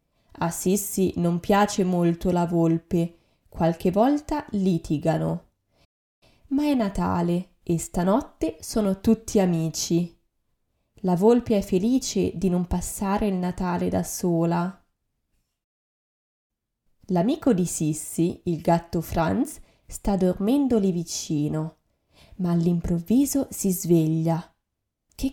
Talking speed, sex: 105 wpm, female